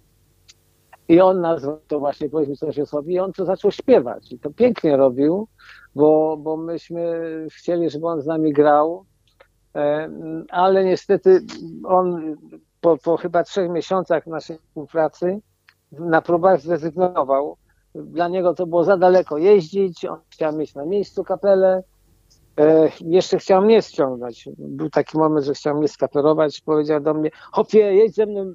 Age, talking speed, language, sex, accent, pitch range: 50-69, 145 wpm, Polish, male, native, 150-190 Hz